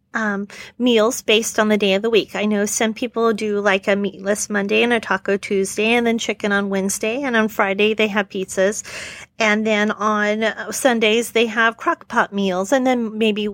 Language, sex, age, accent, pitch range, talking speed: English, female, 40-59, American, 200-235 Hz, 195 wpm